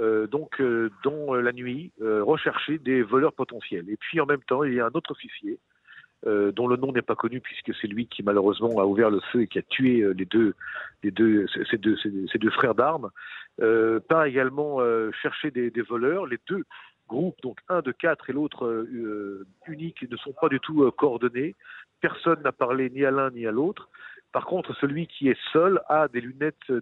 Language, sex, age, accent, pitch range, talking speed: French, male, 50-69, French, 115-145 Hz, 225 wpm